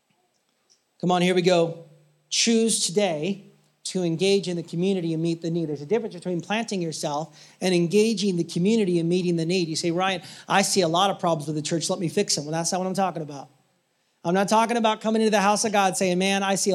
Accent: American